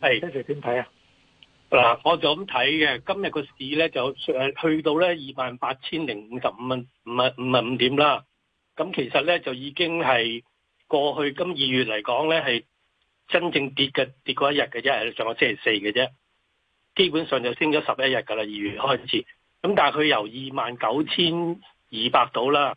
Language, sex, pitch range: Chinese, male, 120-155 Hz